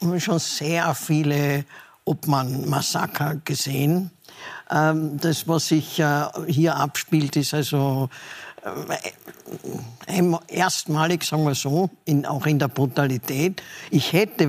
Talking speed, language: 95 wpm, German